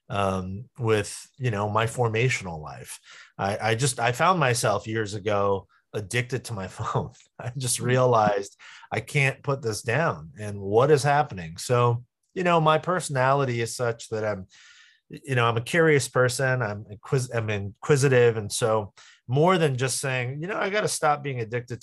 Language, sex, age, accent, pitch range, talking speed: English, male, 30-49, American, 100-135 Hz, 175 wpm